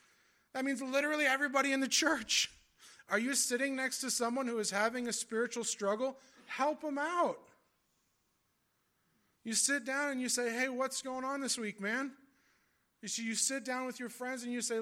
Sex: male